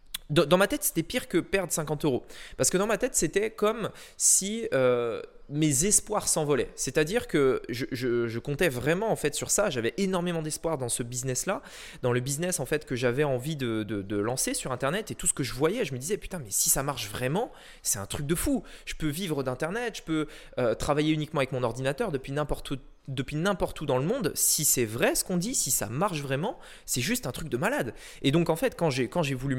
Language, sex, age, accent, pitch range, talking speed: French, male, 20-39, French, 130-190 Hz, 235 wpm